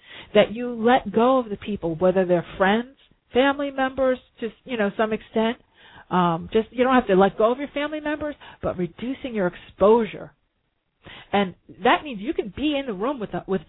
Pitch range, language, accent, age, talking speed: 175-230 Hz, English, American, 40-59, 195 wpm